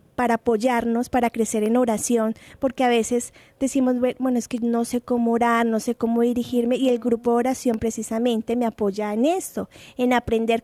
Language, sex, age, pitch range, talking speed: Spanish, female, 20-39, 225-265 Hz, 185 wpm